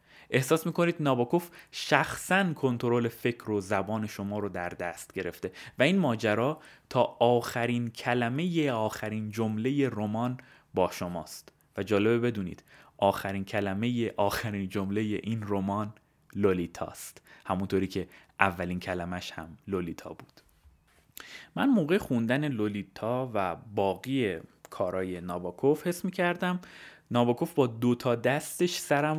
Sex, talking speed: male, 115 wpm